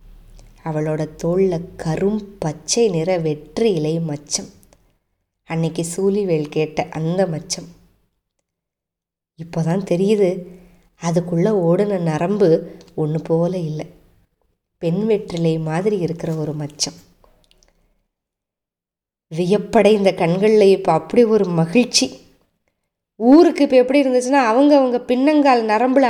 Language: Tamil